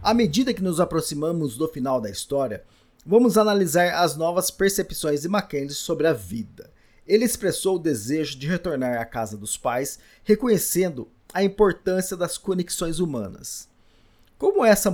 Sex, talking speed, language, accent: male, 150 wpm, Portuguese, Brazilian